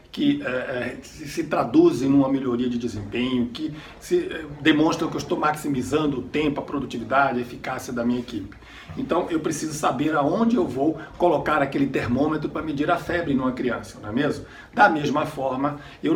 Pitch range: 125-160 Hz